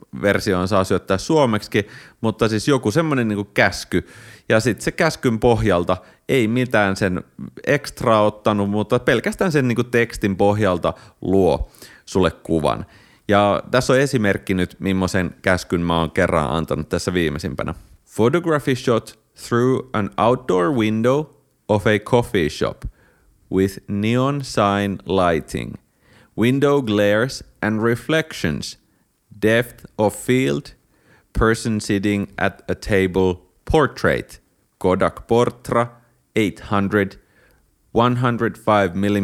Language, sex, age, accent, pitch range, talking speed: Finnish, male, 30-49, native, 95-120 Hz, 115 wpm